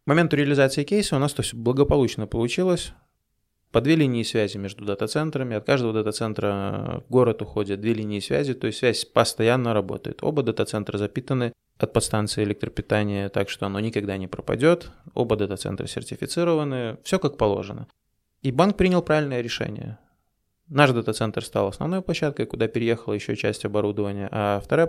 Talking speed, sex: 155 wpm, male